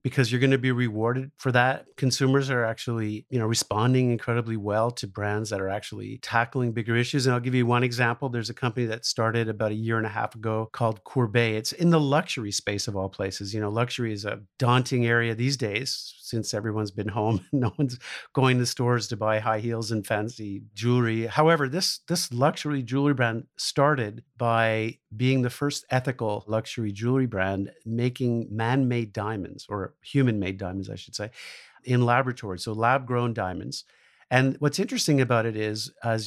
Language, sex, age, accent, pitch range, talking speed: English, male, 50-69, American, 110-130 Hz, 185 wpm